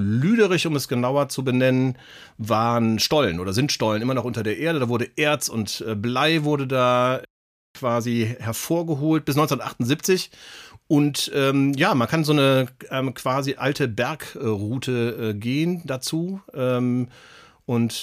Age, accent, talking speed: 40-59, German, 145 wpm